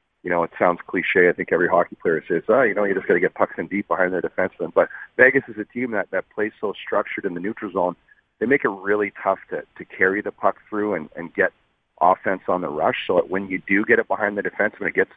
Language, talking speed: English, 275 wpm